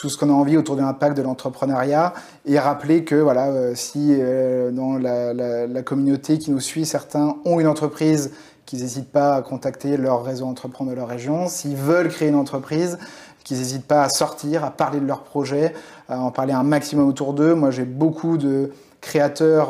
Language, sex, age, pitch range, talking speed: French, male, 30-49, 125-150 Hz, 205 wpm